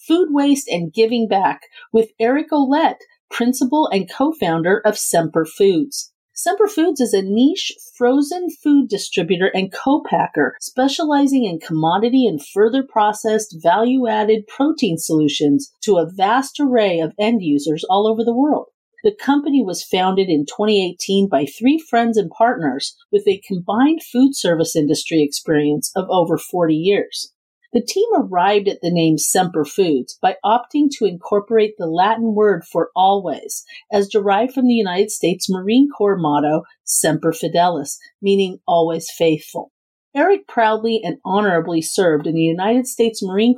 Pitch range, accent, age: 170-260 Hz, American, 40-59